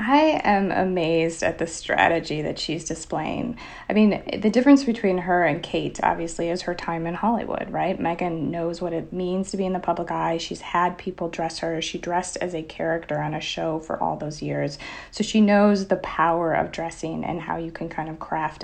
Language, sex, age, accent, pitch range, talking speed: English, female, 30-49, American, 170-205 Hz, 215 wpm